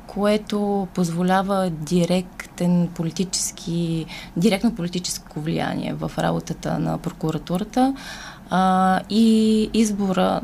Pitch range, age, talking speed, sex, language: 175-210 Hz, 20-39, 80 wpm, female, Bulgarian